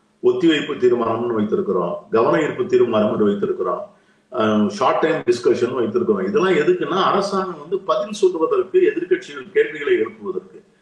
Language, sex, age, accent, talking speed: Tamil, male, 50-69, native, 110 wpm